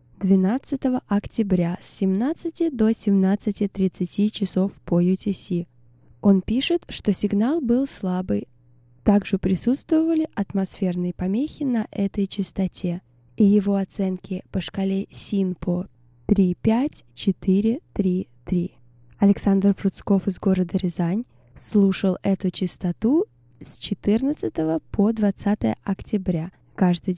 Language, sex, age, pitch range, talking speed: Russian, female, 10-29, 185-220 Hz, 95 wpm